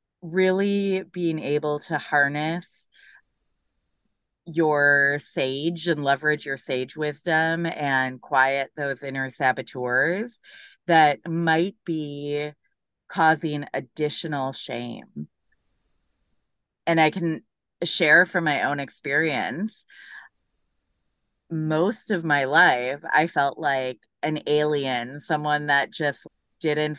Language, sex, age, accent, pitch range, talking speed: English, female, 30-49, American, 145-200 Hz, 100 wpm